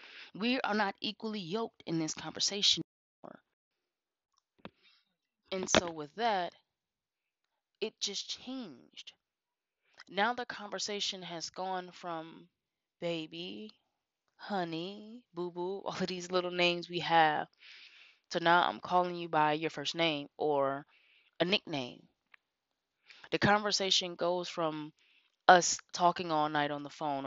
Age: 20-39